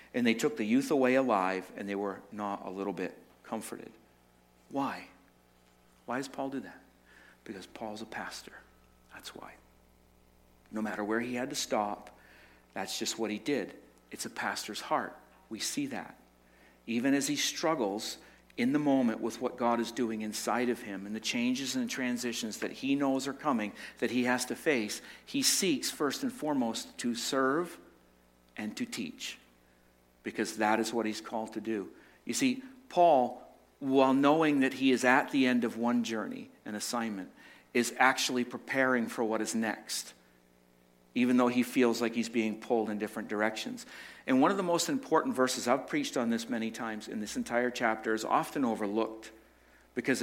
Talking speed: 180 wpm